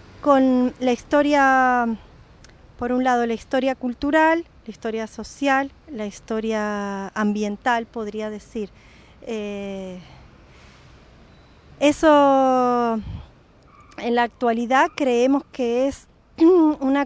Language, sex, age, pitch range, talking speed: Spanish, female, 30-49, 215-265 Hz, 90 wpm